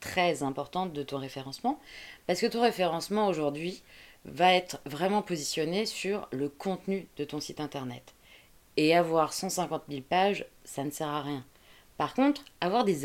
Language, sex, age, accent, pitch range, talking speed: French, female, 20-39, French, 145-205 Hz, 160 wpm